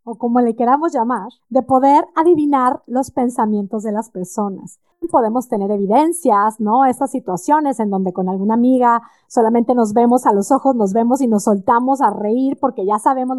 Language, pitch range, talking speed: Spanish, 215-285 Hz, 180 wpm